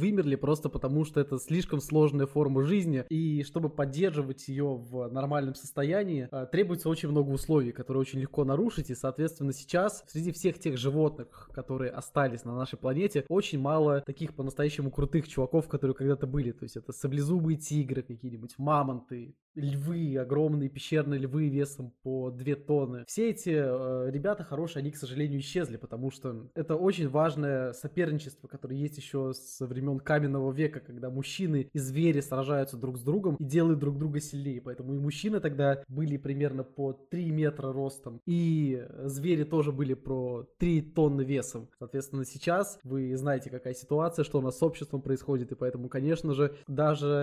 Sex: male